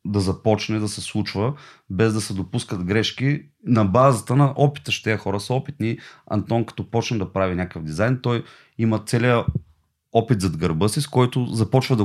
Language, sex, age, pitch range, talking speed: Bulgarian, male, 30-49, 100-125 Hz, 175 wpm